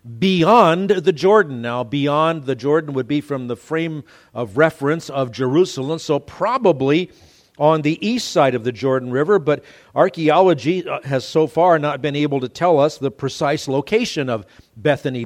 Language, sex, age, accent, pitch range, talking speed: English, male, 50-69, American, 120-165 Hz, 165 wpm